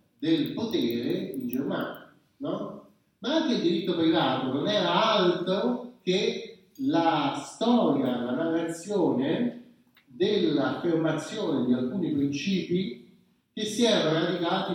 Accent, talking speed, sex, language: native, 105 wpm, male, Italian